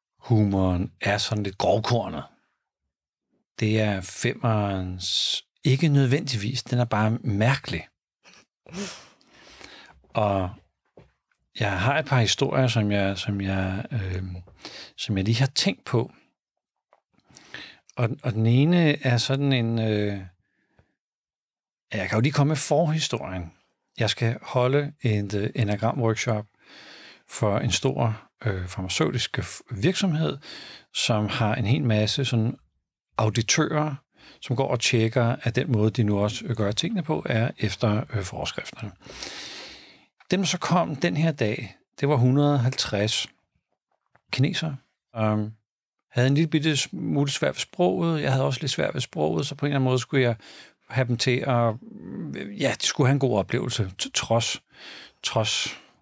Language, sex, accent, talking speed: Danish, male, native, 135 wpm